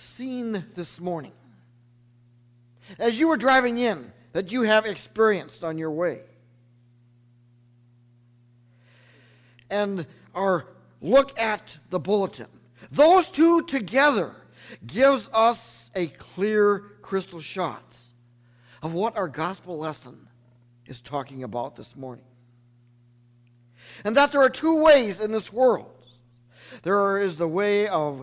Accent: American